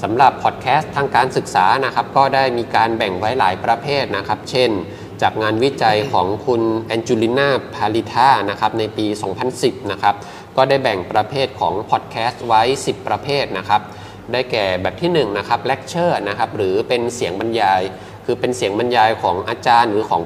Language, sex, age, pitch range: Thai, male, 20-39, 105-125 Hz